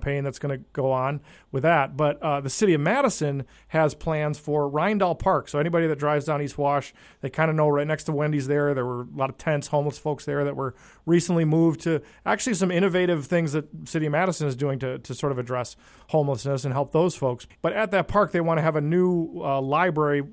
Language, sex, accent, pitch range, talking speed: English, male, American, 140-175 Hz, 235 wpm